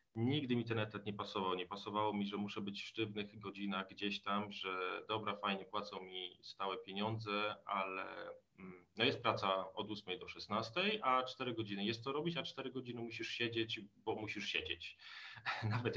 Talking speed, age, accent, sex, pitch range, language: 175 wpm, 40-59, native, male, 100-120 Hz, Polish